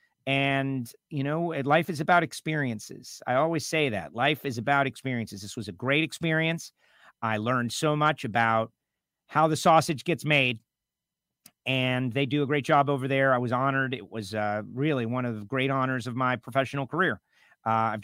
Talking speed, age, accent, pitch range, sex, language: 185 wpm, 40-59, American, 125-170 Hz, male, English